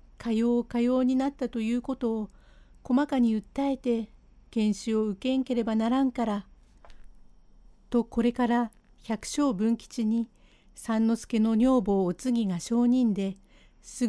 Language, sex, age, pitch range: Japanese, female, 50-69, 210-245 Hz